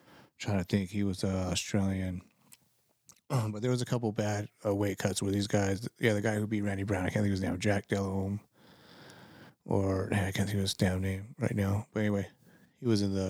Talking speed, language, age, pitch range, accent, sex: 225 wpm, English, 30-49, 95-110 Hz, American, male